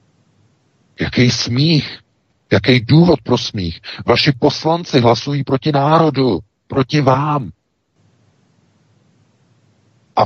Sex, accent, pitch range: male, native, 80-125 Hz